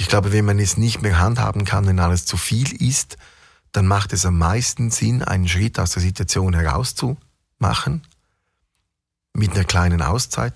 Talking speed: 170 wpm